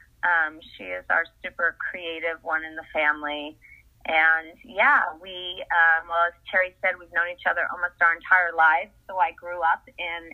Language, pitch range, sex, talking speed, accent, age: English, 165-220 Hz, female, 180 wpm, American, 30-49